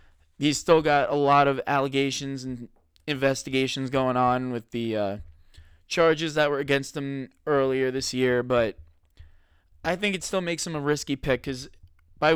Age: 20-39